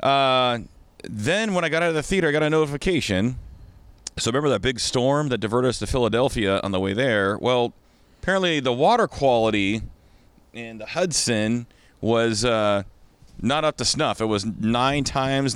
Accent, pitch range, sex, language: American, 90-120 Hz, male, English